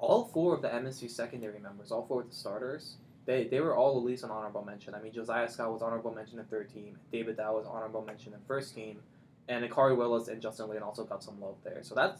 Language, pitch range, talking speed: English, 115-135 Hz, 265 wpm